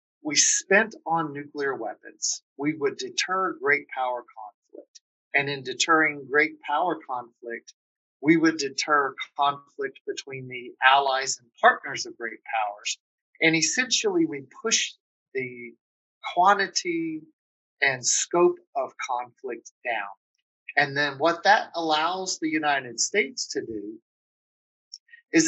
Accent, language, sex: American, English, male